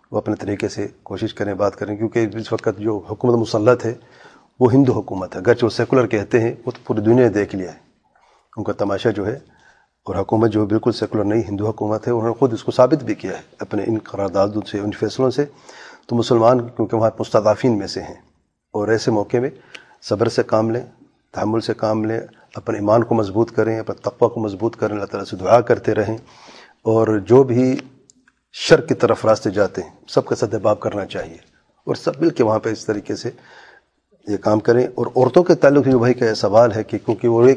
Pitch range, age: 105-120 Hz, 40-59